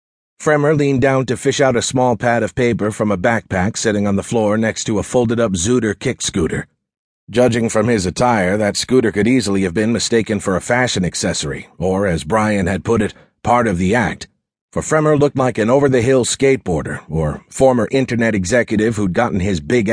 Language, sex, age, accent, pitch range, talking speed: English, male, 40-59, American, 105-125 Hz, 195 wpm